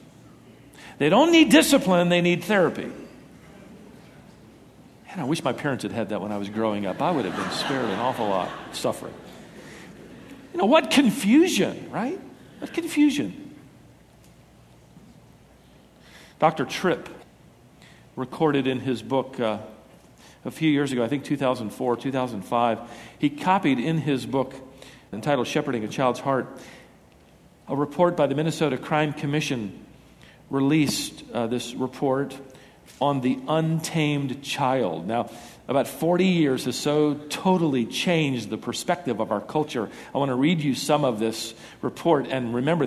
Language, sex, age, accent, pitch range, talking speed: English, male, 50-69, American, 125-160 Hz, 140 wpm